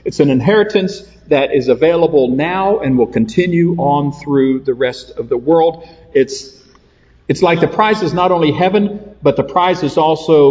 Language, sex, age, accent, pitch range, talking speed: English, male, 50-69, American, 110-155 Hz, 175 wpm